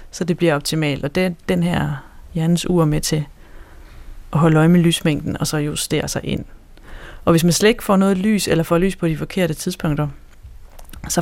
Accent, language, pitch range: native, Danish, 155-195 Hz